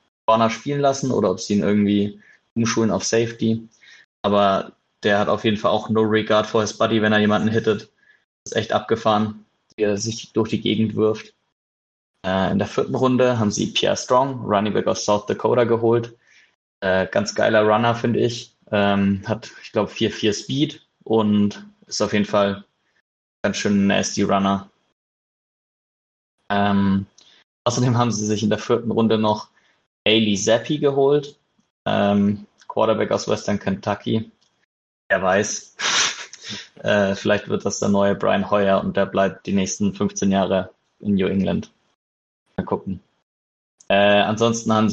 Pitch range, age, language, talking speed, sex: 95-110 Hz, 20-39, German, 150 wpm, male